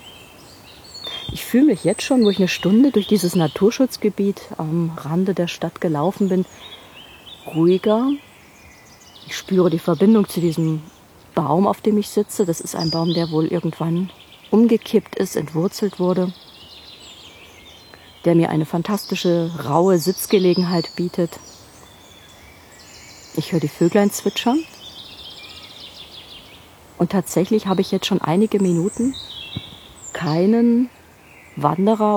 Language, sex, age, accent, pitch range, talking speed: German, female, 40-59, German, 170-210 Hz, 115 wpm